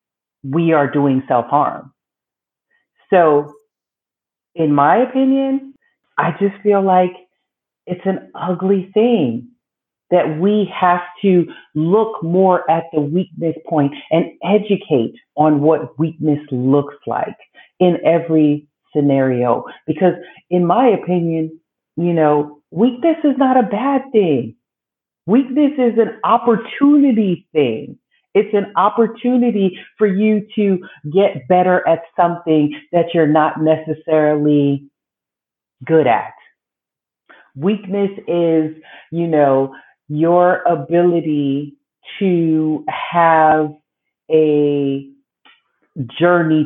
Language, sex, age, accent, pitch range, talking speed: English, female, 40-59, American, 150-205 Hz, 105 wpm